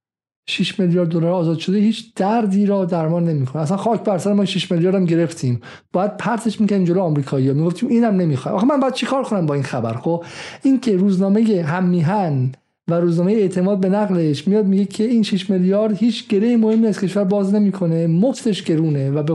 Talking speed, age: 195 wpm, 50-69